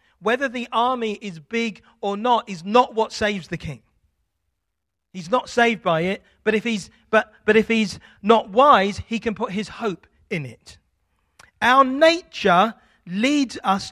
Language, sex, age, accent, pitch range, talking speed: English, male, 40-59, British, 170-245 Hz, 165 wpm